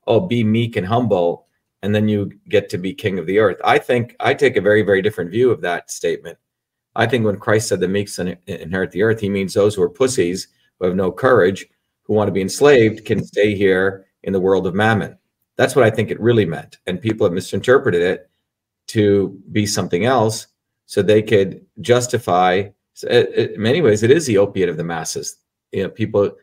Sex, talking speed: male, 210 wpm